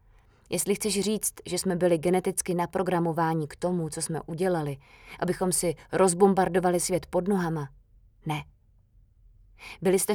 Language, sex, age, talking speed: Czech, female, 20-39, 130 wpm